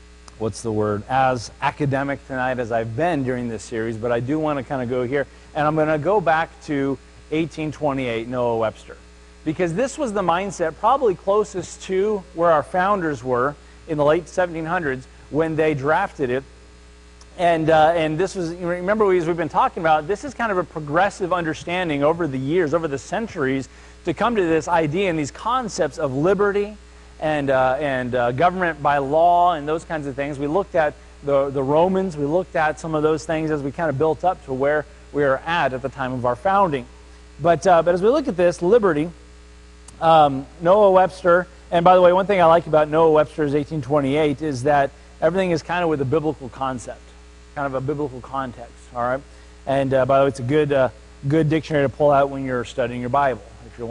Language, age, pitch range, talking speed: English, 40-59, 130-170 Hz, 210 wpm